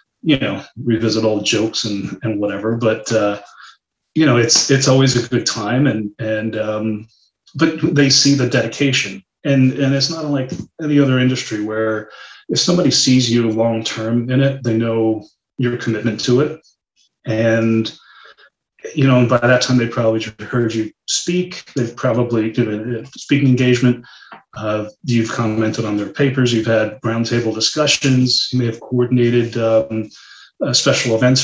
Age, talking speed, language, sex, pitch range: 30-49, 160 wpm, English, male, 110-135 Hz